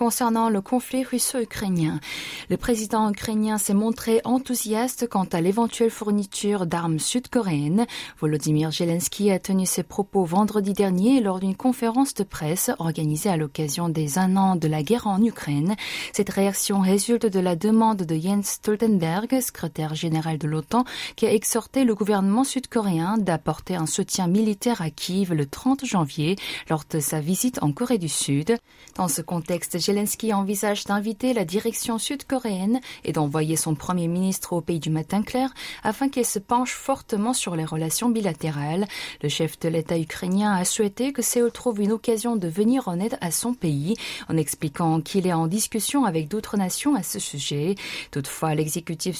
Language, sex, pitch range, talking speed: French, female, 165-225 Hz, 165 wpm